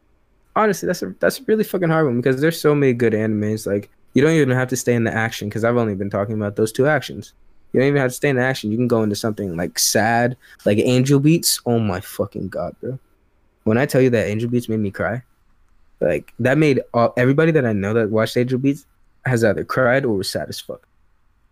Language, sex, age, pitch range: English, male, 20-39, 105-130 Hz